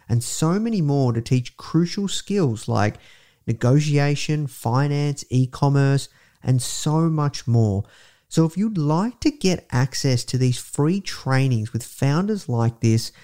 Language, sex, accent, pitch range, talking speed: English, male, Australian, 120-160 Hz, 140 wpm